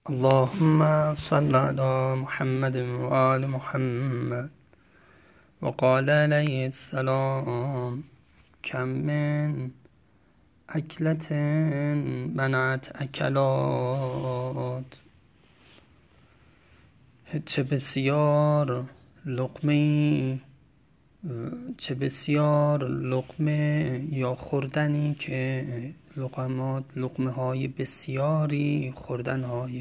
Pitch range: 125-145 Hz